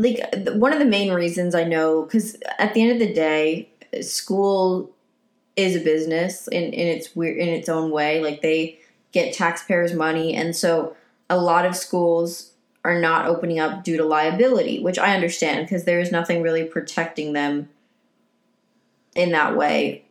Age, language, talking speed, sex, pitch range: 20-39, English, 165 wpm, female, 165-215 Hz